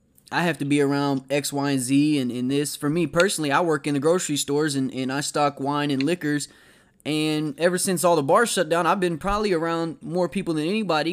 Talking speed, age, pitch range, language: 235 wpm, 20-39, 145-175 Hz, English